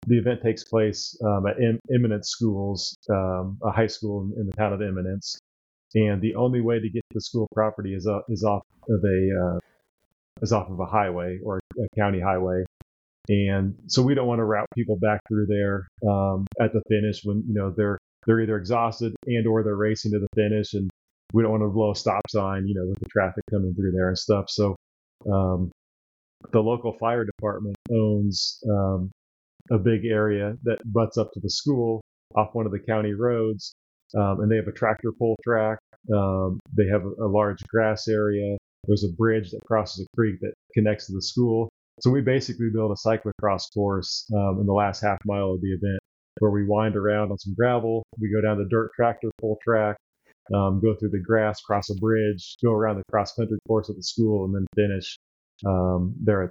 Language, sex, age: English, male, 30-49